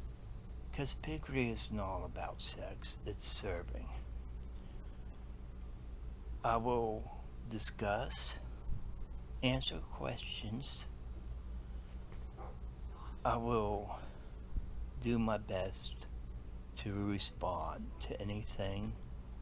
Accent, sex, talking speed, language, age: American, male, 70 wpm, English, 60-79